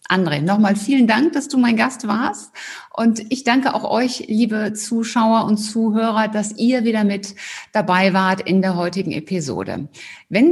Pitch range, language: 180-220 Hz, German